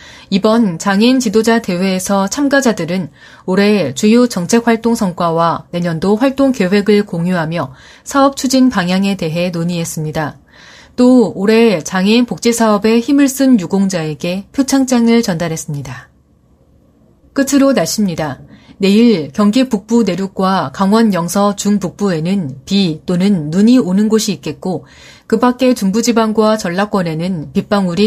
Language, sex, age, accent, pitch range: Korean, female, 30-49, native, 175-230 Hz